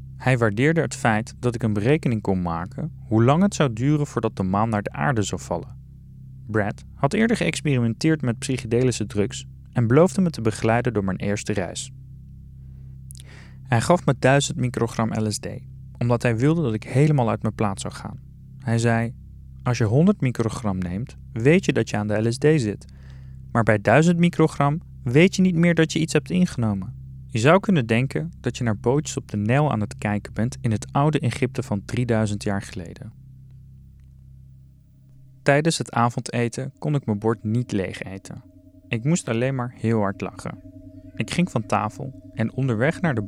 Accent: Dutch